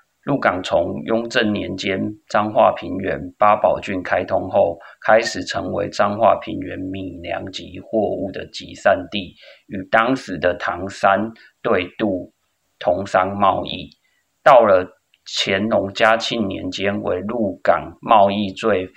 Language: Chinese